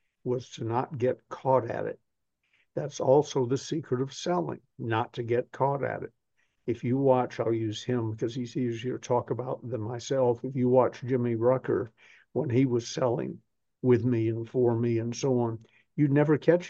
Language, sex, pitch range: English, male, 120-135 Hz